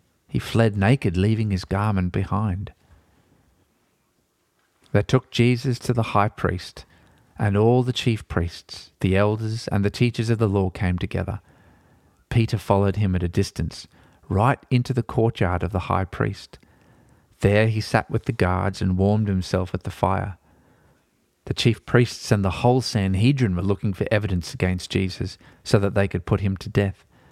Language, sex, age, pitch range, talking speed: English, male, 40-59, 95-120 Hz, 165 wpm